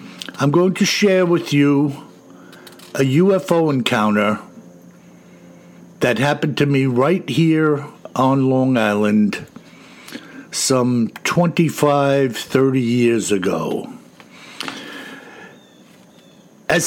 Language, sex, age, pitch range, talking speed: English, male, 60-79, 120-165 Hz, 85 wpm